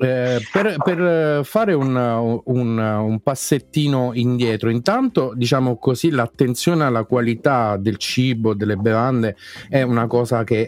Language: Italian